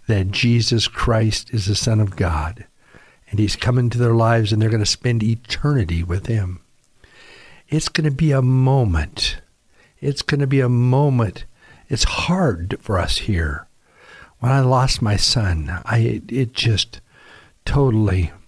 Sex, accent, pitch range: male, American, 95-115 Hz